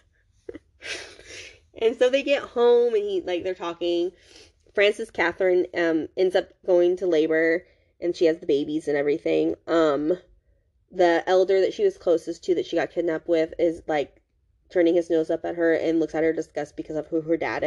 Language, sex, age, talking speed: English, female, 20-39, 190 wpm